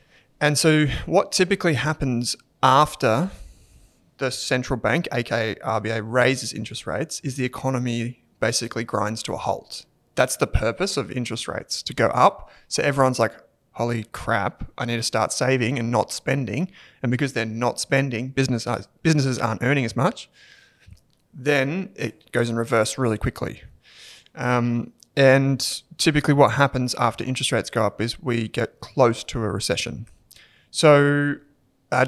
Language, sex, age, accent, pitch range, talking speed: English, male, 20-39, Australian, 115-140 Hz, 150 wpm